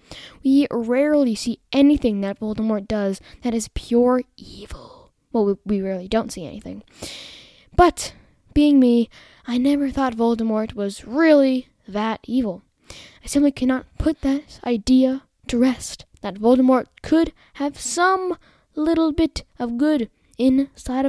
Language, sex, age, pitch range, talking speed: English, female, 10-29, 220-285 Hz, 135 wpm